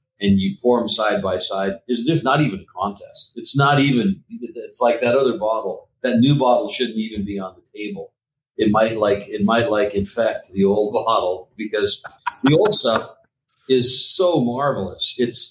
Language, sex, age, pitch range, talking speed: English, male, 50-69, 100-120 Hz, 175 wpm